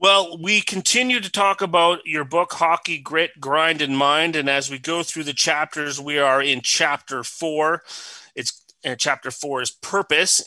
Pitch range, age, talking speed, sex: 125-155 Hz, 30-49, 180 wpm, male